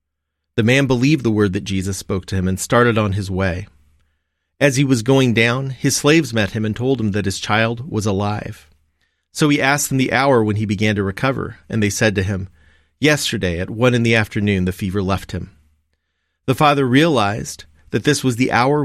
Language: English